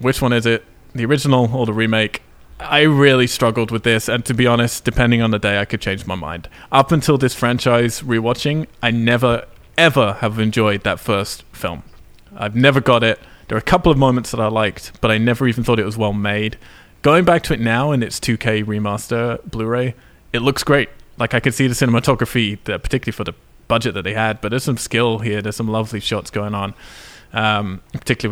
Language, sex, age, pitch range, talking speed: English, male, 20-39, 105-125 Hz, 210 wpm